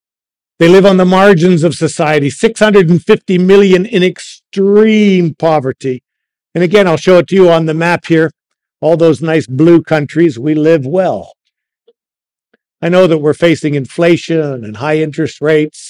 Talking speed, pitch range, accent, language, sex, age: 155 wpm, 150-185 Hz, American, English, male, 50-69